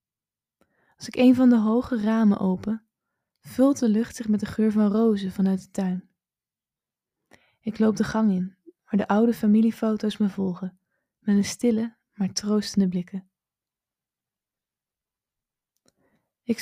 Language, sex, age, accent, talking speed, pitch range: Dutch, female, 20-39, Dutch, 135 wpm, 195-225 Hz